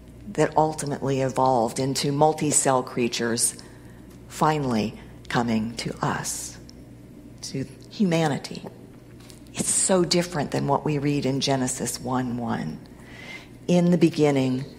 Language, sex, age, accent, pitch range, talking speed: English, female, 50-69, American, 130-165 Hz, 100 wpm